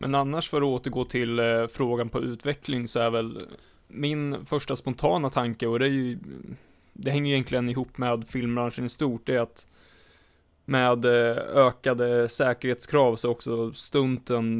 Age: 20-39